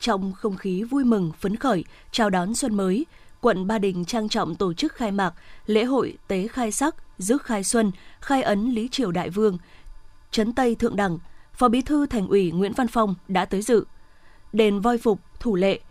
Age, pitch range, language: 20-39, 200-240 Hz, Vietnamese